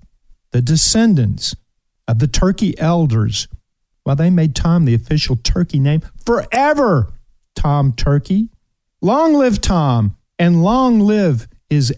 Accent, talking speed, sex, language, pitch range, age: American, 120 wpm, male, English, 125-190 Hz, 50-69